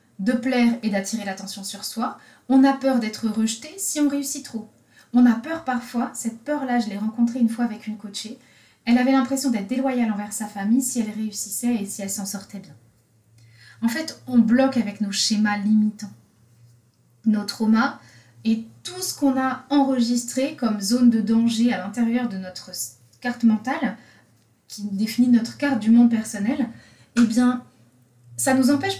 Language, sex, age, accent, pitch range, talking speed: French, female, 20-39, French, 205-250 Hz, 175 wpm